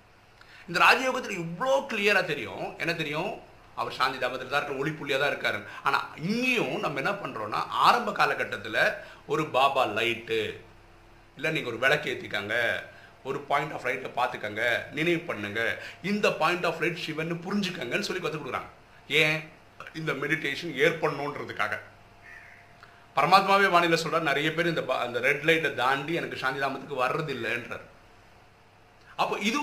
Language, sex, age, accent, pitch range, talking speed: Tamil, male, 50-69, native, 135-180 Hz, 130 wpm